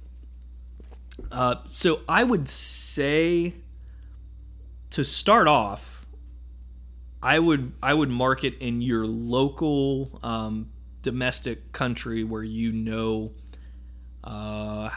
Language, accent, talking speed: English, American, 90 wpm